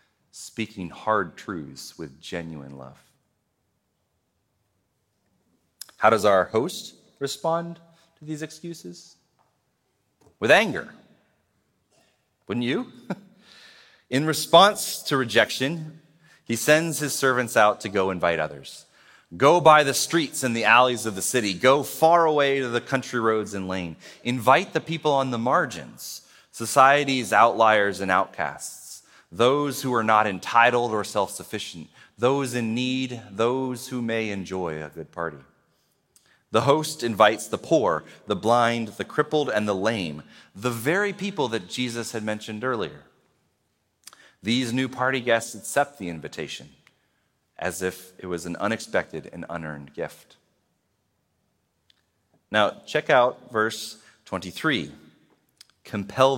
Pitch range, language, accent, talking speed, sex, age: 95-135 Hz, English, American, 125 wpm, male, 30-49